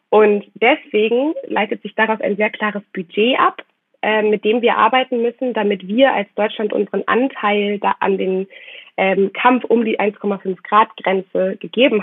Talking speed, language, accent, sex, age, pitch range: 155 wpm, German, German, female, 20-39, 190-225 Hz